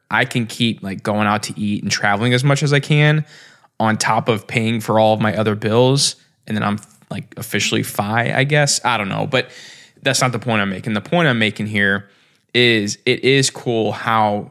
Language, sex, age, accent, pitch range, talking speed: English, male, 20-39, American, 105-130 Hz, 220 wpm